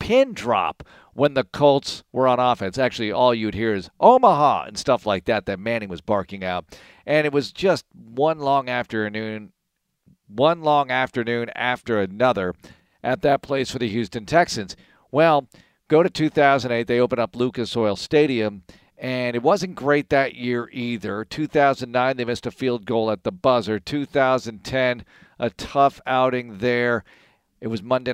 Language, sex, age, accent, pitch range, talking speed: English, male, 50-69, American, 115-145 Hz, 160 wpm